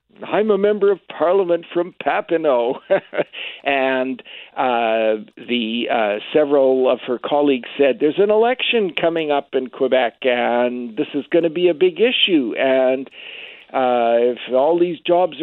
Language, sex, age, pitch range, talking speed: English, male, 60-79, 130-205 Hz, 150 wpm